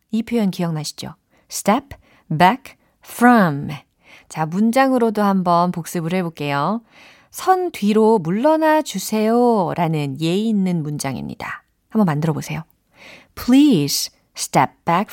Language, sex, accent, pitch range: Korean, female, native, 170-255 Hz